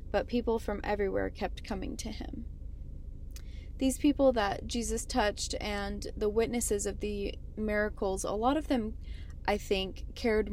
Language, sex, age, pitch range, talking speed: English, female, 20-39, 185-215 Hz, 150 wpm